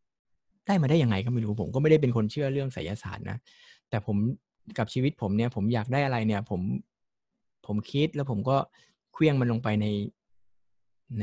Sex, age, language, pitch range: male, 20-39, Thai, 105-130 Hz